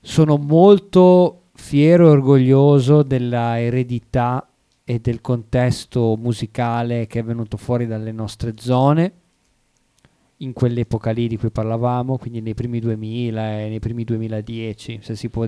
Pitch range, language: 115-145 Hz, Italian